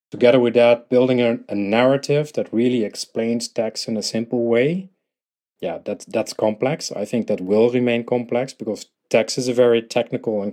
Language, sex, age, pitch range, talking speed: English, male, 40-59, 105-120 Hz, 180 wpm